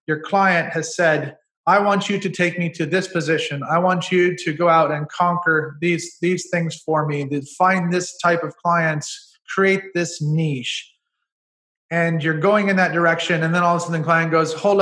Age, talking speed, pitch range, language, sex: 30-49, 205 wpm, 155-190 Hz, English, male